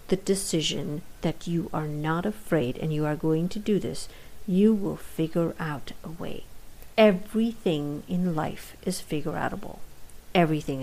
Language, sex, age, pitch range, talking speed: English, female, 50-69, 160-205 Hz, 145 wpm